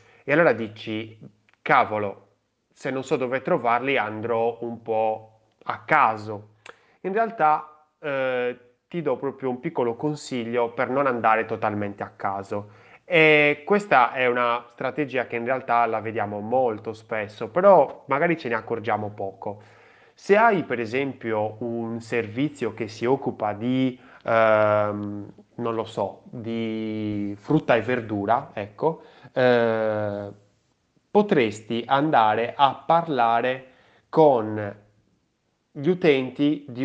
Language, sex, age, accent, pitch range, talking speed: Italian, male, 20-39, native, 110-130 Hz, 120 wpm